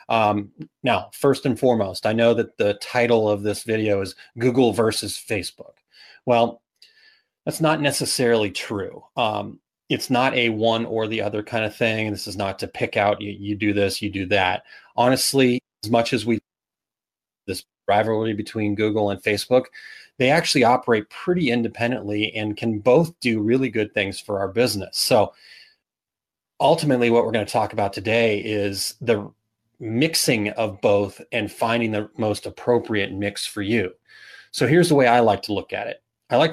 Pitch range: 105-120 Hz